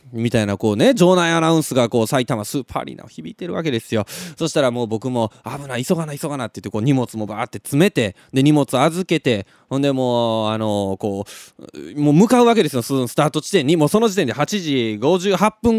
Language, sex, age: Japanese, male, 20-39